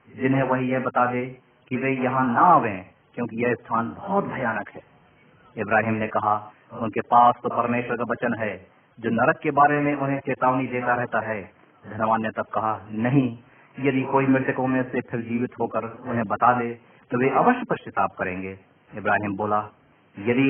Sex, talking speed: male, 180 wpm